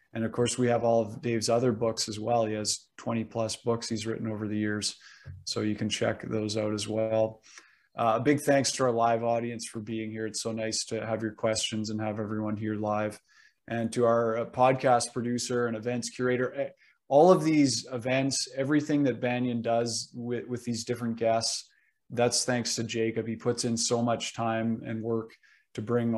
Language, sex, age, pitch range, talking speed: English, male, 20-39, 110-125 Hz, 200 wpm